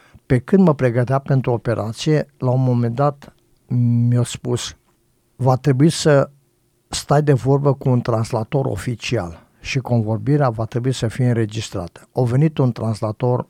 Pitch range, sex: 115-135 Hz, male